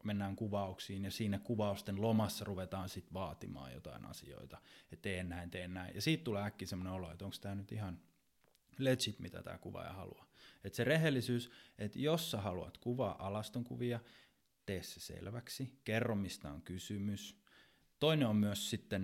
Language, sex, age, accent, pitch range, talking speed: Finnish, male, 20-39, native, 95-115 Hz, 160 wpm